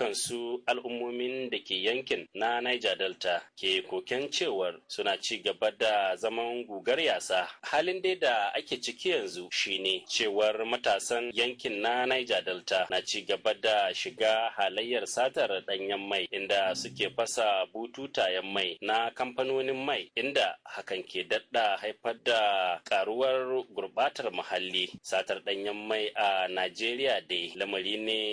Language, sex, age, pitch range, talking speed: English, male, 30-49, 100-125 Hz, 115 wpm